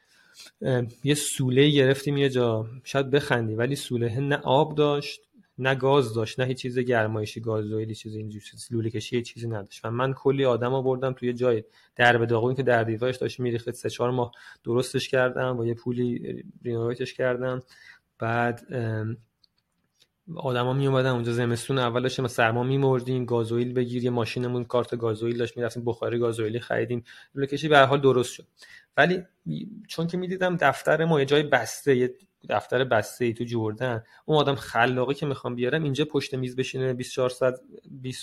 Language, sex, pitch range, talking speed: English, male, 120-135 Hz, 165 wpm